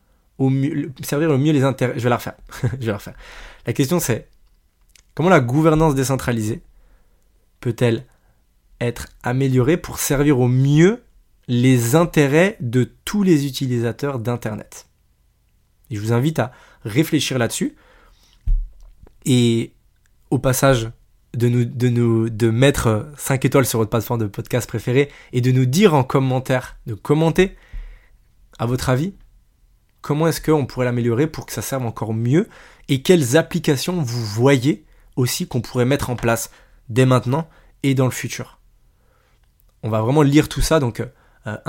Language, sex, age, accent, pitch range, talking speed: French, male, 20-39, French, 115-145 Hz, 150 wpm